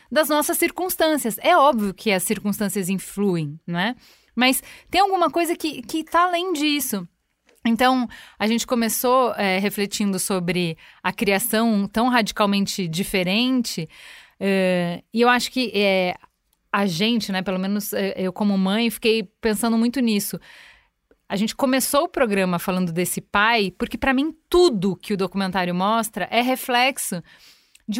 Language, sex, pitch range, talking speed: Portuguese, female, 205-340 Hz, 145 wpm